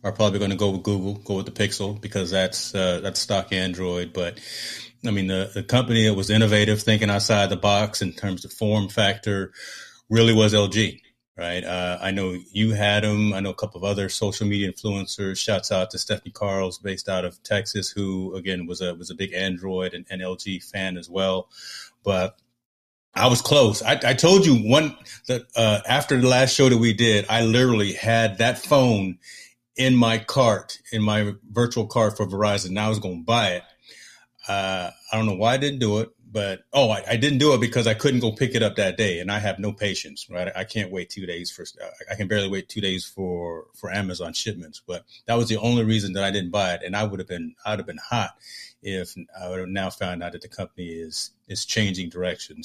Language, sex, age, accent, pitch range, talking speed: English, male, 30-49, American, 95-110 Hz, 225 wpm